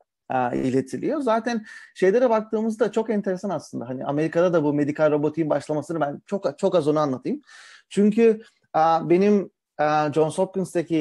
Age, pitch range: 40-59, 150-215 Hz